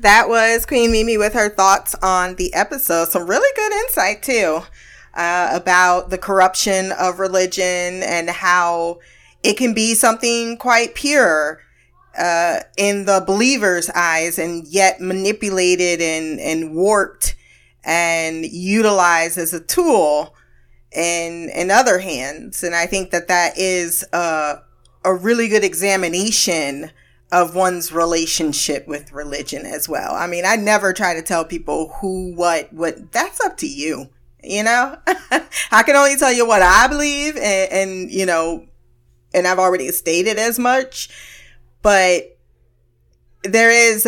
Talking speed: 145 wpm